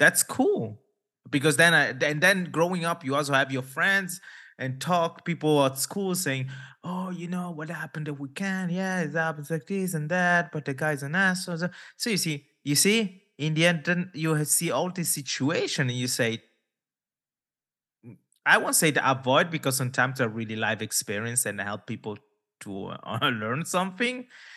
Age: 20-39